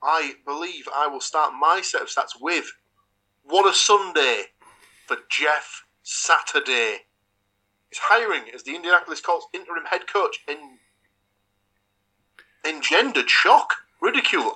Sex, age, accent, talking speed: male, 30-49, British, 125 wpm